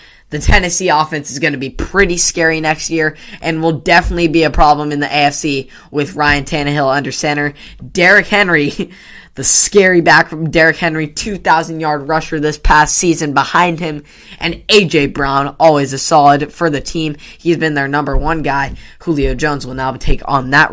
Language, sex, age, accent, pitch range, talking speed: English, female, 10-29, American, 140-165 Hz, 180 wpm